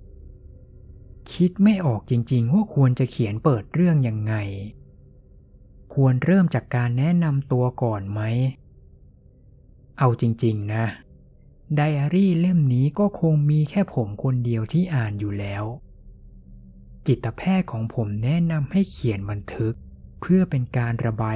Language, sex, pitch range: Thai, male, 105-140 Hz